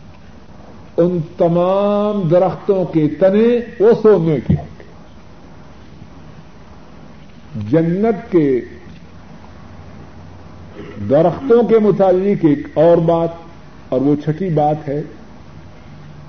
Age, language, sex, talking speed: 50-69, Urdu, male, 75 wpm